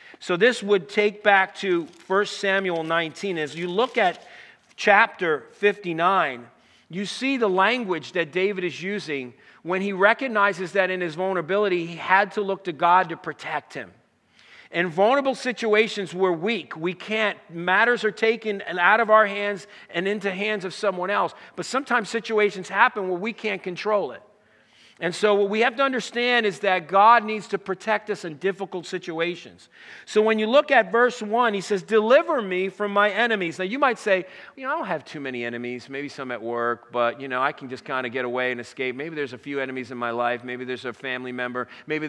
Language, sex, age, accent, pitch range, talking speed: English, male, 50-69, American, 140-215 Hz, 200 wpm